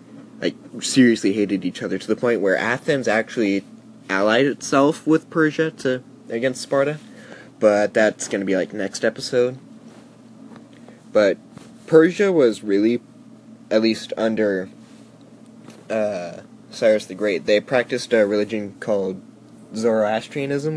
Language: English